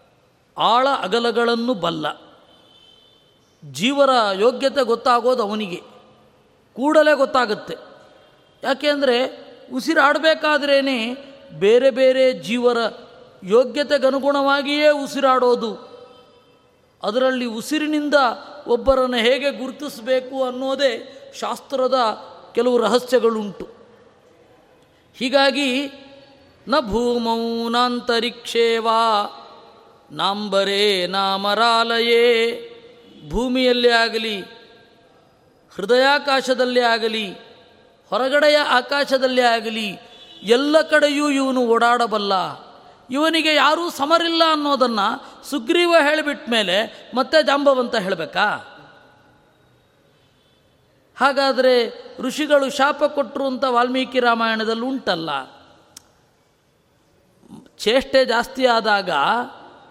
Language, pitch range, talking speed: Kannada, 230-275 Hz, 60 wpm